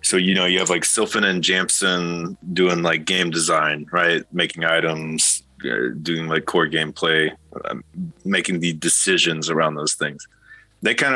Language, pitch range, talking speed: English, 80-95 Hz, 150 wpm